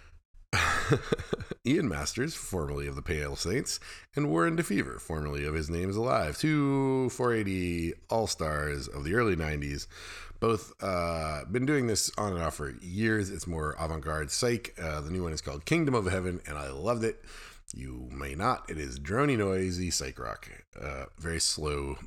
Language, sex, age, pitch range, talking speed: English, male, 40-59, 80-115 Hz, 170 wpm